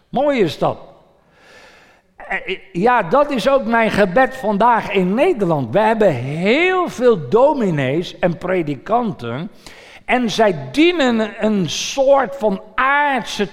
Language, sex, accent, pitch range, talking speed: Dutch, male, Dutch, 170-230 Hz, 115 wpm